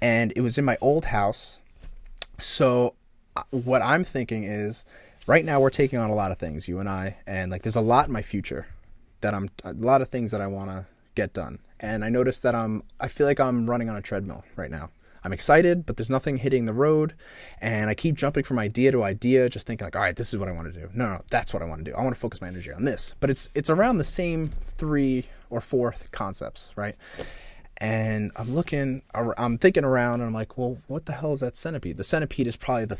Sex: male